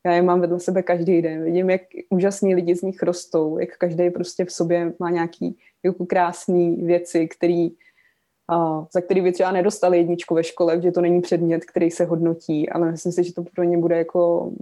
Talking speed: 195 wpm